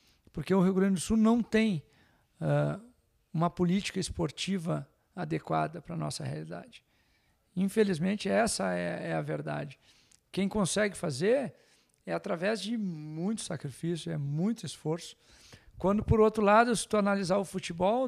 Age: 50-69